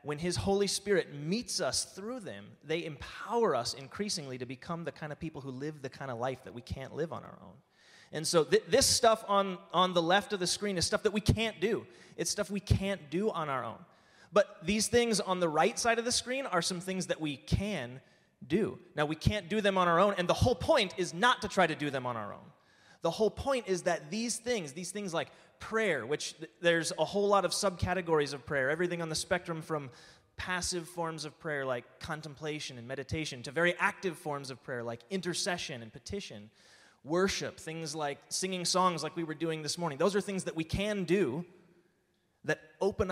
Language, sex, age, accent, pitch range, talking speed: English, male, 30-49, American, 145-195 Hz, 220 wpm